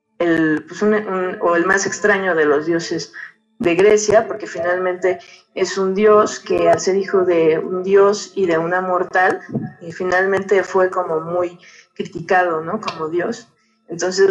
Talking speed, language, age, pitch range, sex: 165 wpm, Spanish, 20-39, 175-215 Hz, female